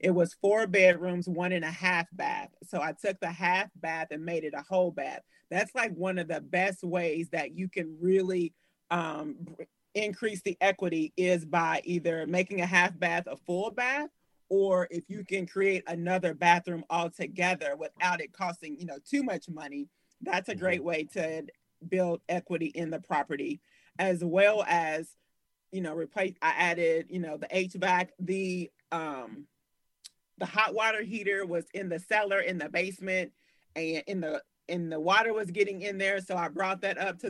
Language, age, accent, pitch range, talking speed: English, 30-49, American, 170-195 Hz, 180 wpm